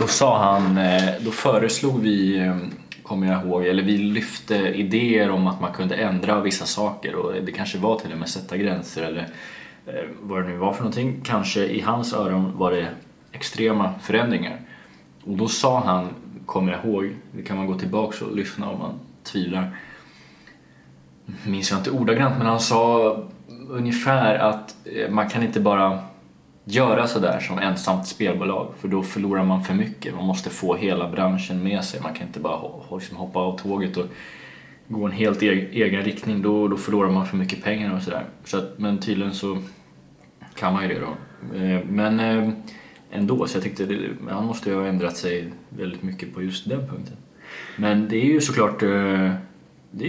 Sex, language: male, Swedish